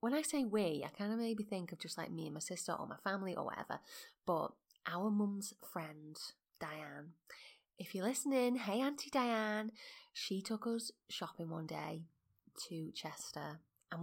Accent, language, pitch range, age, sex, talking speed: British, English, 165-215 Hz, 20-39, female, 175 wpm